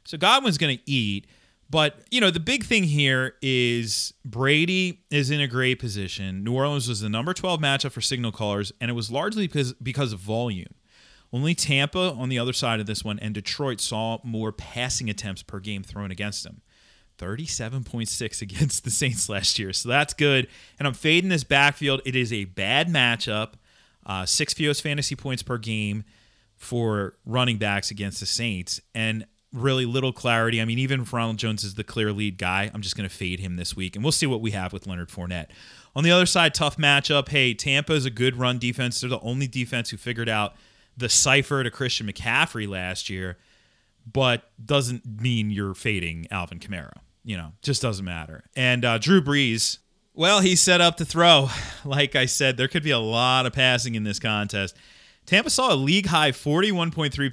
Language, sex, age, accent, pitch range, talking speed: English, male, 30-49, American, 105-140 Hz, 195 wpm